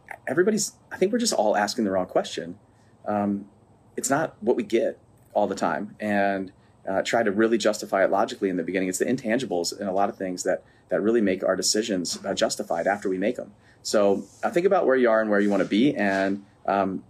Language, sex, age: English, male, 30-49